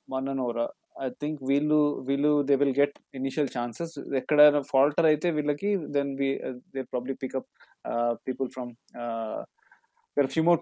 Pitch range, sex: 125-150 Hz, male